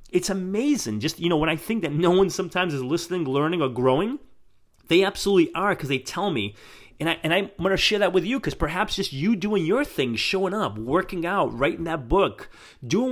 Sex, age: male, 30-49